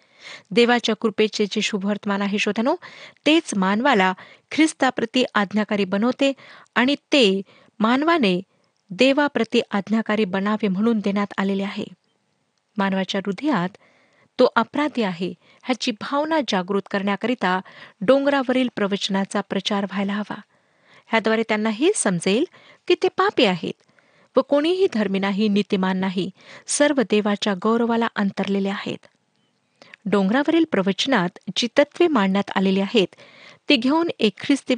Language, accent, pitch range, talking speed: Marathi, native, 200-265 Hz, 110 wpm